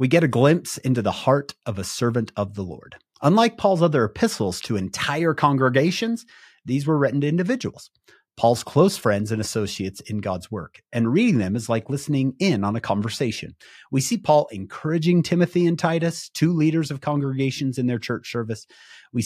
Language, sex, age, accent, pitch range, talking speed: English, male, 30-49, American, 105-145 Hz, 185 wpm